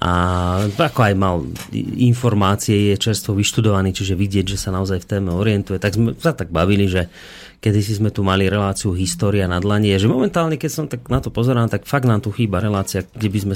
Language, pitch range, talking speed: Slovak, 95-115 Hz, 210 wpm